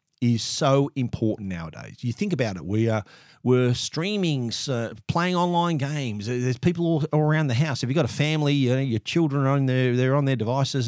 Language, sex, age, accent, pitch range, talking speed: English, male, 50-69, Australian, 120-155 Hz, 210 wpm